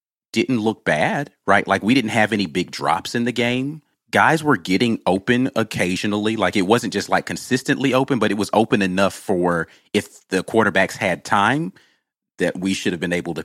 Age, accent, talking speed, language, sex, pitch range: 30-49, American, 195 wpm, English, male, 90-120 Hz